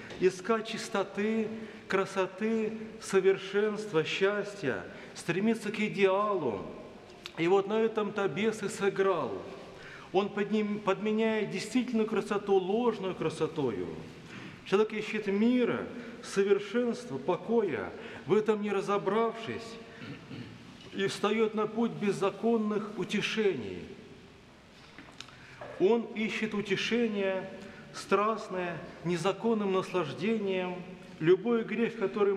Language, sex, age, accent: Russian, male, 40-59, native